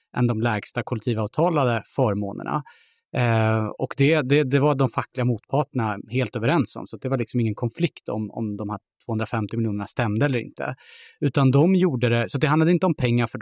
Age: 30-49